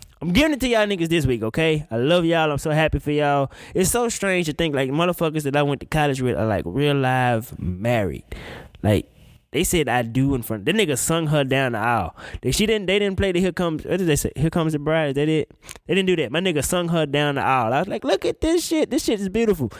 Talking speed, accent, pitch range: 270 wpm, American, 120-170 Hz